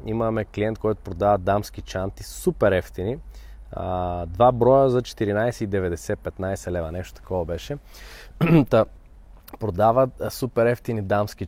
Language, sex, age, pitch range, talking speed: Bulgarian, male, 20-39, 95-120 Hz, 120 wpm